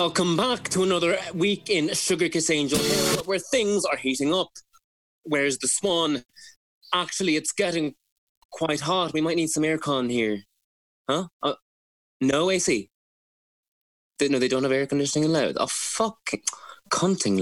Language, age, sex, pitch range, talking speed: English, 20-39, male, 130-180 Hz, 150 wpm